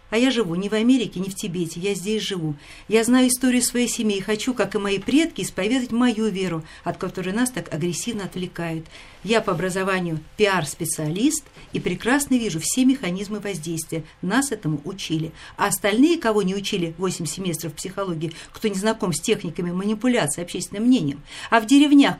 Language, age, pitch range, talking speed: Russian, 50-69, 180-255 Hz, 175 wpm